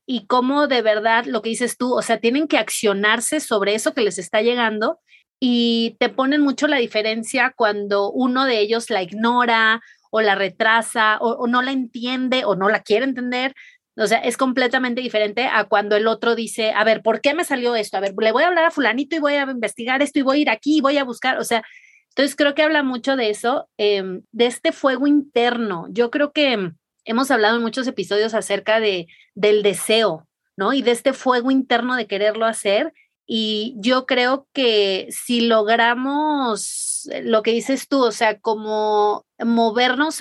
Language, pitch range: Spanish, 215-265 Hz